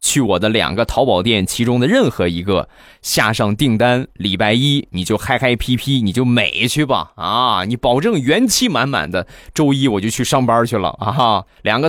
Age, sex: 20-39, male